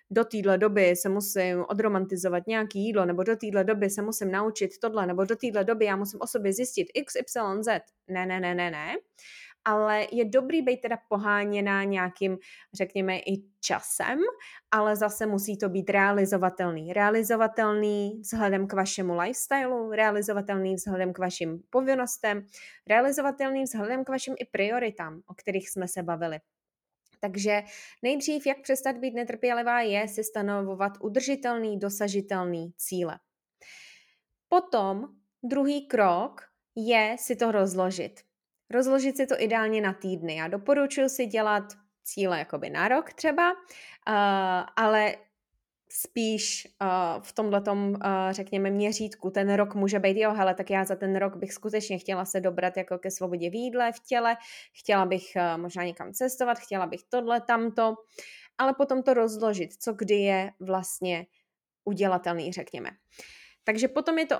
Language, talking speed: Czech, 145 wpm